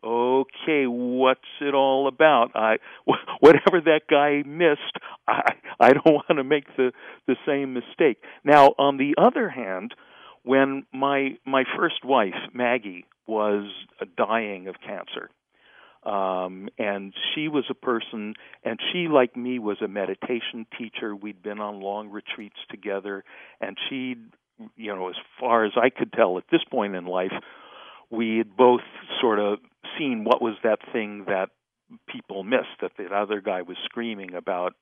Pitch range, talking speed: 100-135 Hz, 155 wpm